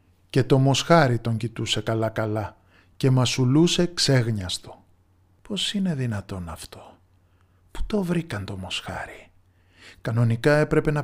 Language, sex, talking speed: Greek, male, 115 wpm